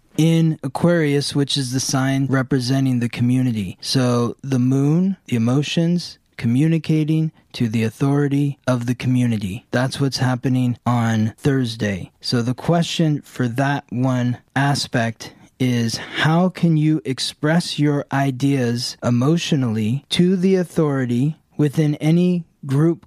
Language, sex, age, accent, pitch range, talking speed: English, male, 20-39, American, 120-140 Hz, 120 wpm